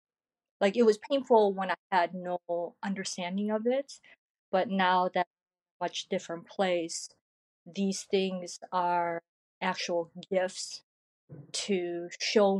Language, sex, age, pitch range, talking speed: English, female, 30-49, 180-205 Hz, 115 wpm